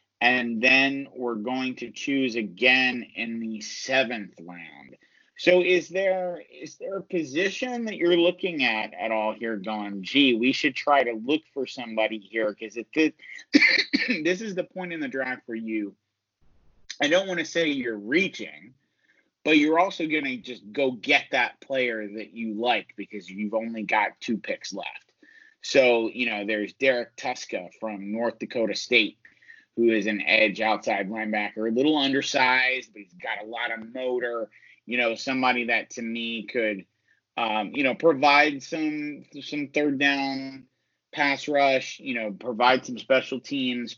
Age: 30-49